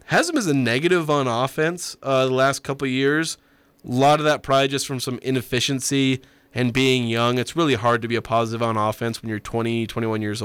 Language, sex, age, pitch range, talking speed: English, male, 20-39, 115-135 Hz, 225 wpm